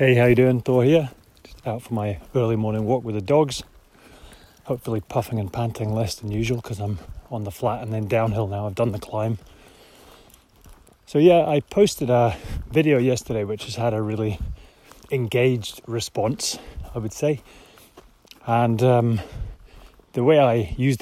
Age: 30-49